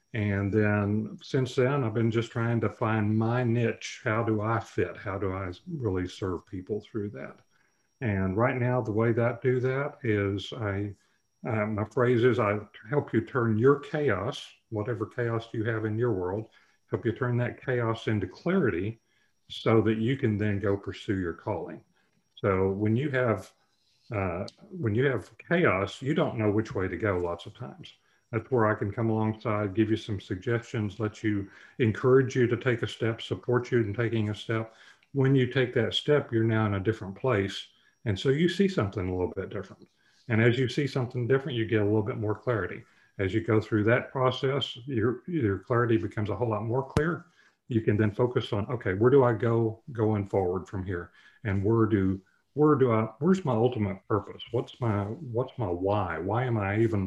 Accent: American